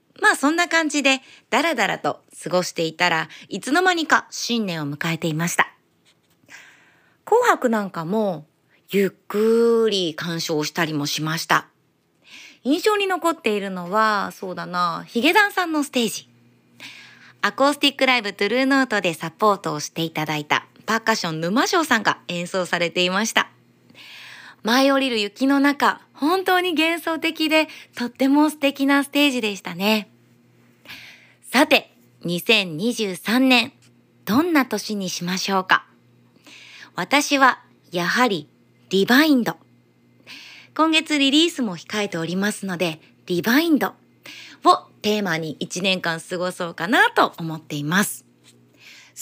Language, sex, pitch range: Japanese, female, 170-280 Hz